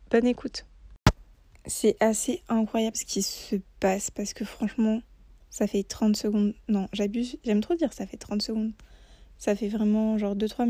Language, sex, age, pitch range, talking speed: French, female, 20-39, 210-235 Hz, 170 wpm